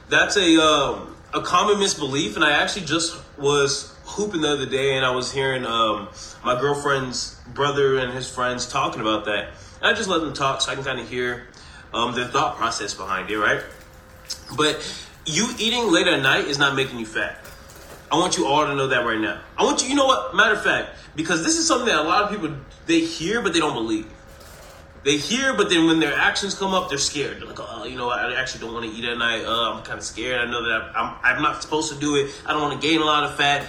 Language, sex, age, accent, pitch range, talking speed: English, male, 20-39, American, 120-170 Hz, 250 wpm